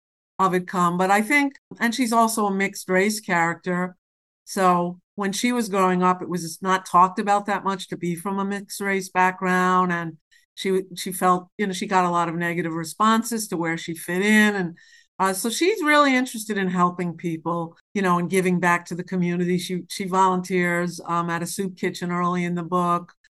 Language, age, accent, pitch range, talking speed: English, 50-69, American, 175-205 Hz, 205 wpm